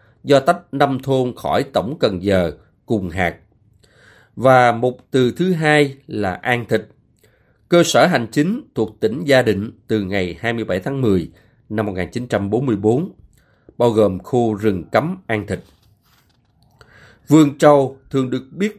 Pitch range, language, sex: 110-150 Hz, Vietnamese, male